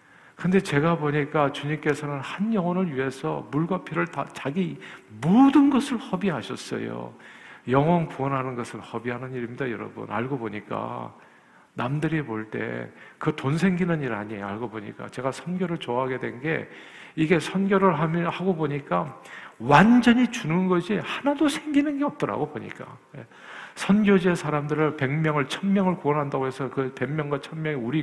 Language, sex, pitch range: Korean, male, 130-175 Hz